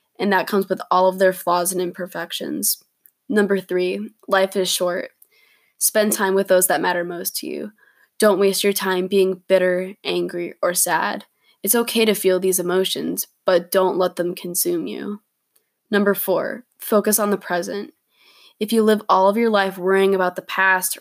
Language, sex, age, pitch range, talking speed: English, female, 10-29, 180-205 Hz, 175 wpm